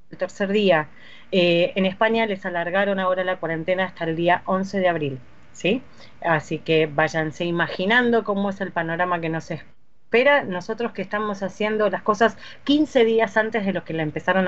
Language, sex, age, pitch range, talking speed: Spanish, female, 30-49, 180-270 Hz, 180 wpm